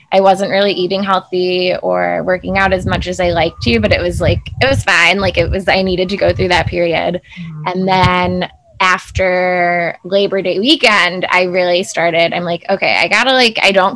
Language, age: English, 20-39